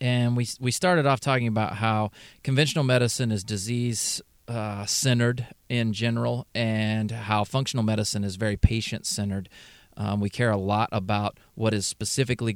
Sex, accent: male, American